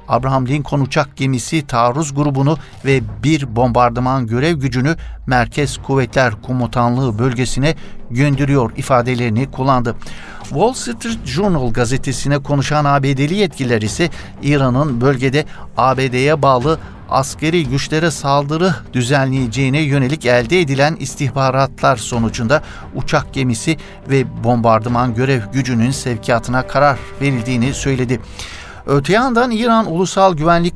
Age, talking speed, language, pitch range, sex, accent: 60-79, 105 wpm, Turkish, 125-155 Hz, male, native